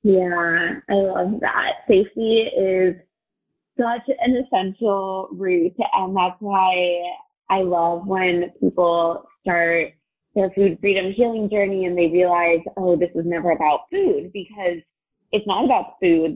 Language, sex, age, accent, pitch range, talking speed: English, female, 20-39, American, 170-200 Hz, 135 wpm